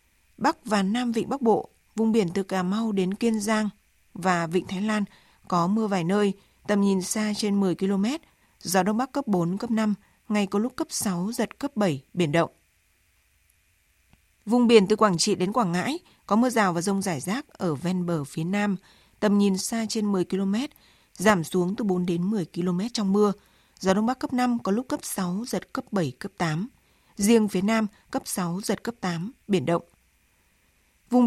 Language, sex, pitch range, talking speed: Vietnamese, female, 180-220 Hz, 200 wpm